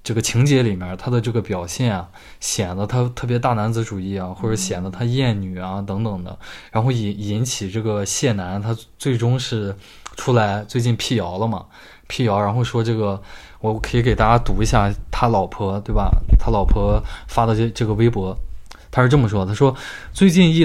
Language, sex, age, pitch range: Chinese, male, 20-39, 100-130 Hz